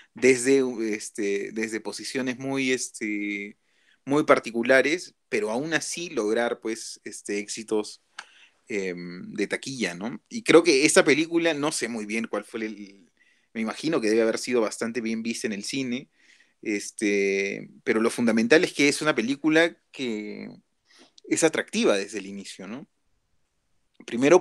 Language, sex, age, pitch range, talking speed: Spanish, male, 30-49, 105-145 Hz, 145 wpm